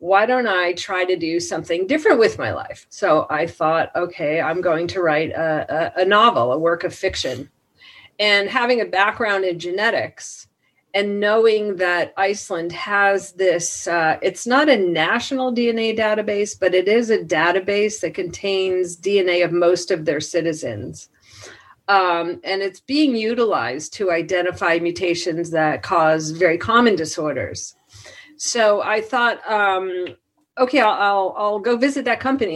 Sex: female